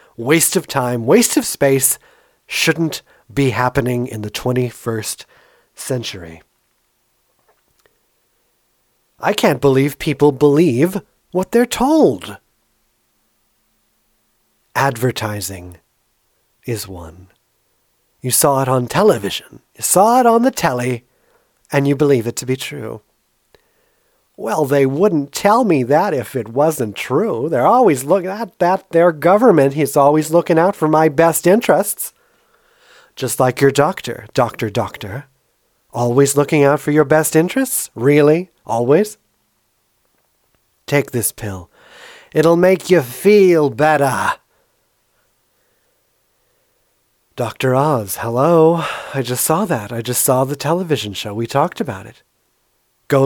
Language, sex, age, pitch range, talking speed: English, male, 40-59, 125-170 Hz, 120 wpm